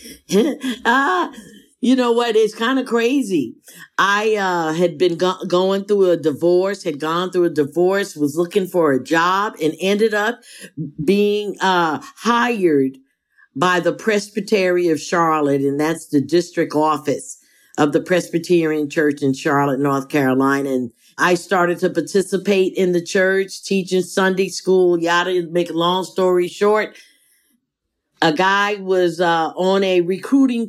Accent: American